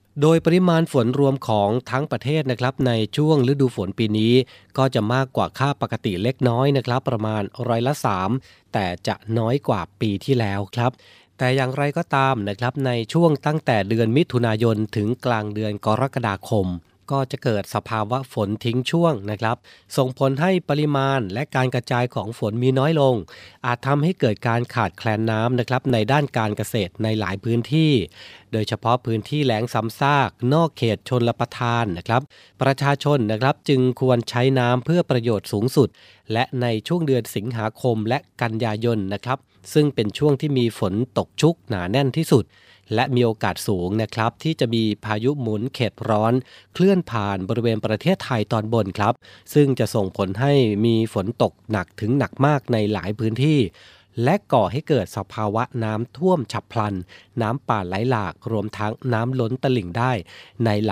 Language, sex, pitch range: Thai, male, 110-135 Hz